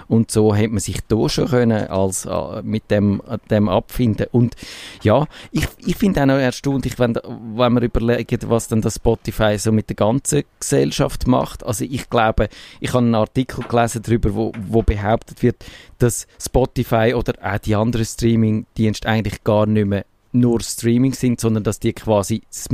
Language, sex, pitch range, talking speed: German, male, 100-120 Hz, 180 wpm